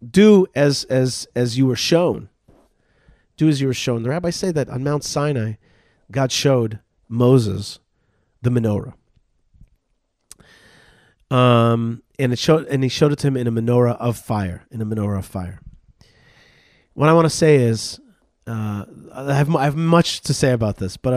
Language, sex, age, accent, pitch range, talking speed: English, male, 40-59, American, 105-140 Hz, 175 wpm